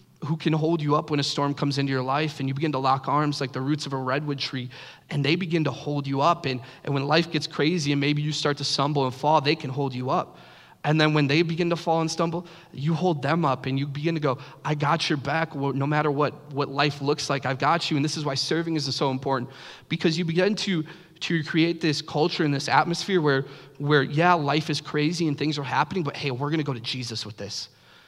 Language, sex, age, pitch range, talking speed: English, male, 20-39, 130-155 Hz, 265 wpm